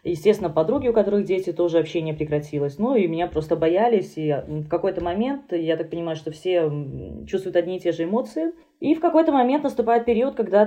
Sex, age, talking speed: female, 20-39, 195 wpm